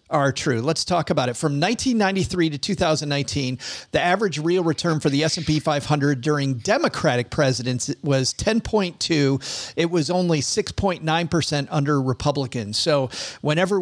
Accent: American